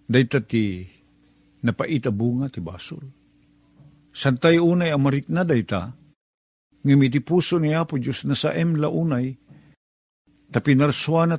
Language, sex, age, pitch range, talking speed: Filipino, male, 50-69, 135-165 Hz, 105 wpm